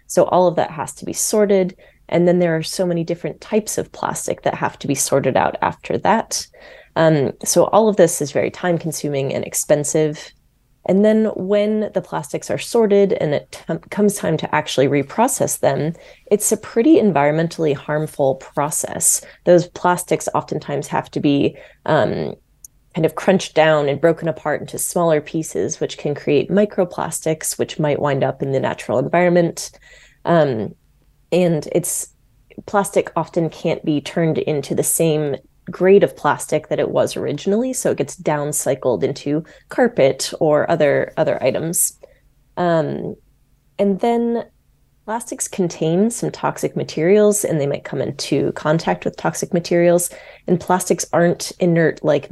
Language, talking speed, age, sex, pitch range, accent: English, 155 wpm, 20-39, female, 150-195 Hz, American